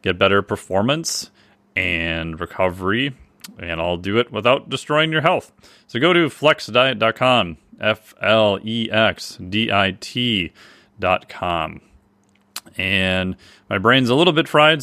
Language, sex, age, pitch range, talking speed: English, male, 30-49, 95-120 Hz, 100 wpm